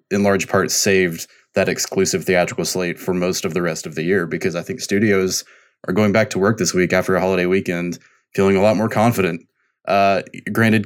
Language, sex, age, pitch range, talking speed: English, male, 20-39, 95-105 Hz, 210 wpm